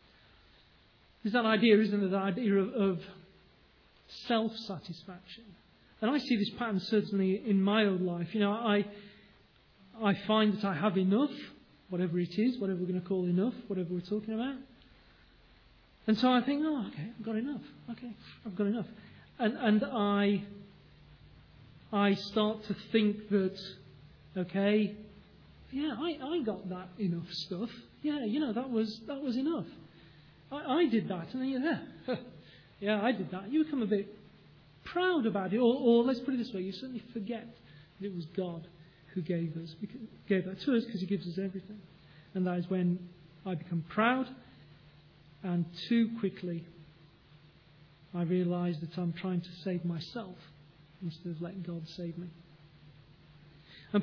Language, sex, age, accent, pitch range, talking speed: English, male, 40-59, British, 175-225 Hz, 165 wpm